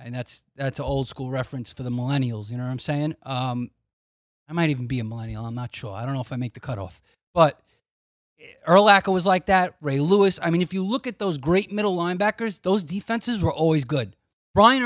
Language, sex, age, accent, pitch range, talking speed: English, male, 30-49, American, 130-190 Hz, 220 wpm